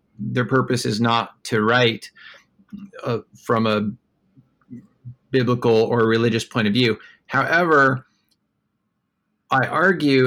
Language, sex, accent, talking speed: English, male, American, 105 wpm